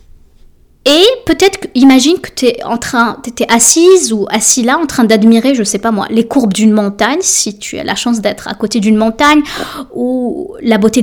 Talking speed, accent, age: 195 wpm, French, 20-39